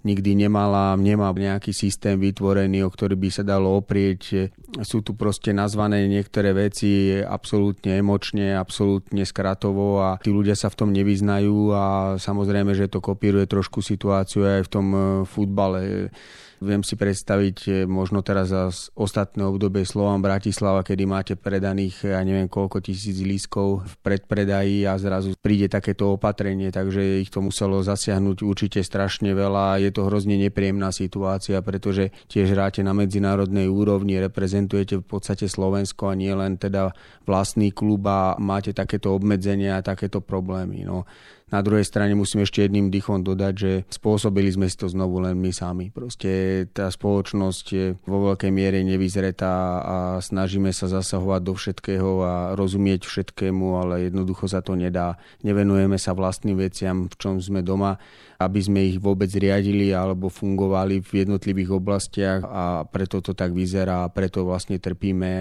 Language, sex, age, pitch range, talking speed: Slovak, male, 30-49, 95-100 Hz, 155 wpm